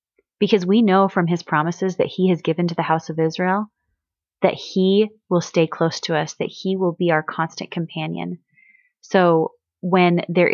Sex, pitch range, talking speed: female, 170-215 Hz, 180 wpm